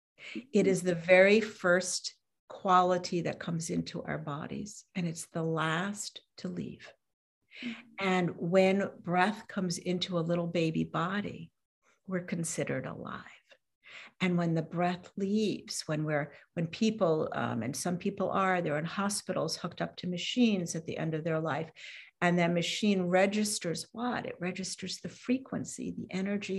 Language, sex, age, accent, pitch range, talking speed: English, female, 60-79, American, 175-205 Hz, 150 wpm